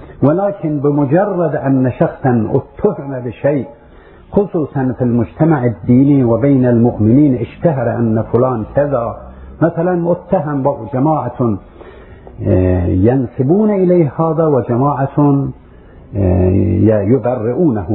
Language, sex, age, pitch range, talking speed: Arabic, male, 50-69, 115-155 Hz, 80 wpm